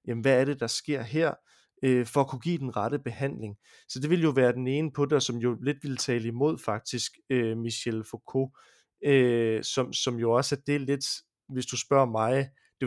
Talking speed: 225 wpm